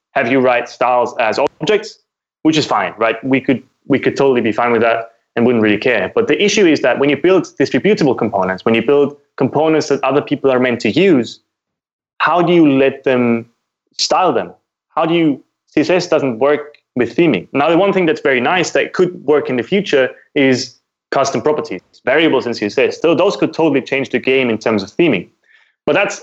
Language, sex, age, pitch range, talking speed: English, male, 20-39, 115-155 Hz, 210 wpm